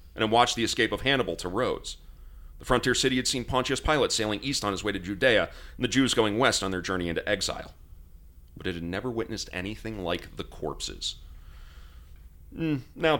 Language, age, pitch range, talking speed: English, 40-59, 75-105 Hz, 195 wpm